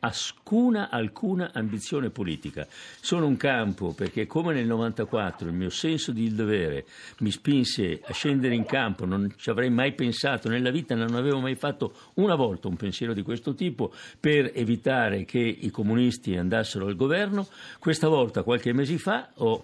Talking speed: 165 wpm